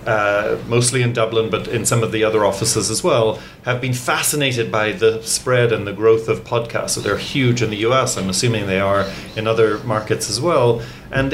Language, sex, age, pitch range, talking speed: English, male, 30-49, 110-125 Hz, 210 wpm